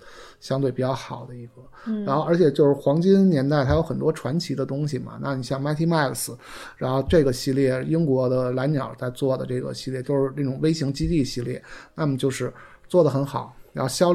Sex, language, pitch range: male, Chinese, 130-160 Hz